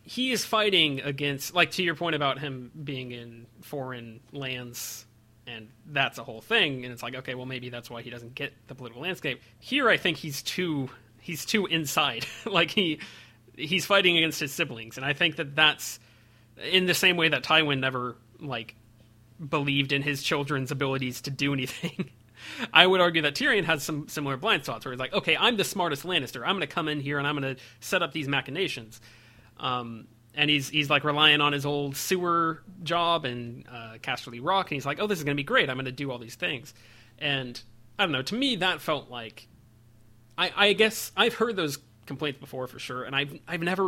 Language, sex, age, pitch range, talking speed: English, male, 30-49, 120-165 Hz, 210 wpm